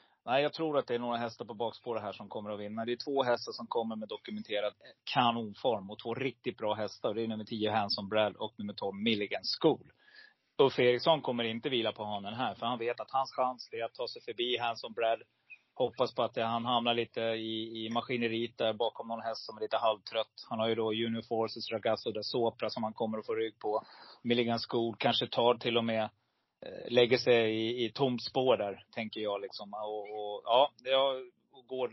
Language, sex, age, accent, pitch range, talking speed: Swedish, male, 30-49, native, 110-125 Hz, 210 wpm